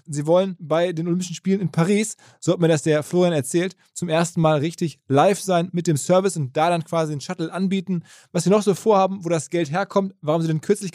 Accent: German